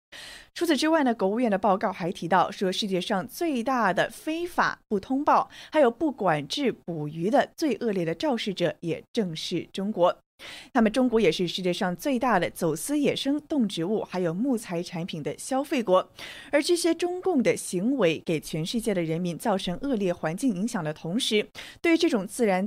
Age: 20-39